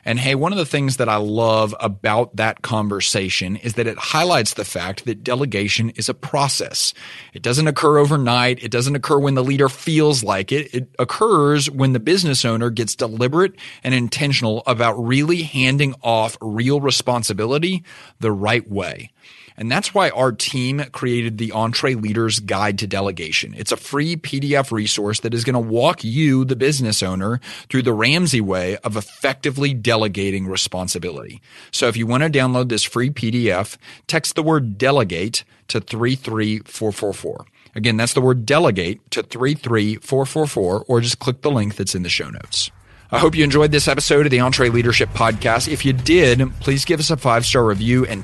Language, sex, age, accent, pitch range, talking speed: English, male, 30-49, American, 105-135 Hz, 175 wpm